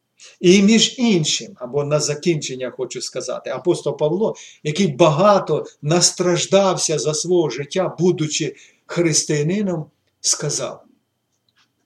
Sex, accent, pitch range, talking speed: male, native, 145-185 Hz, 95 wpm